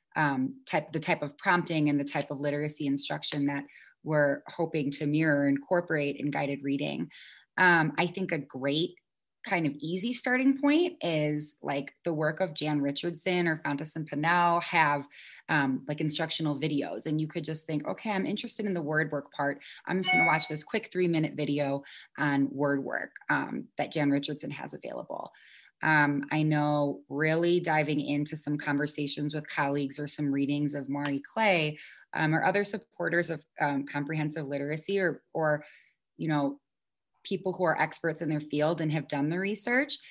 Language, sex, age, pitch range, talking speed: English, female, 20-39, 145-175 Hz, 175 wpm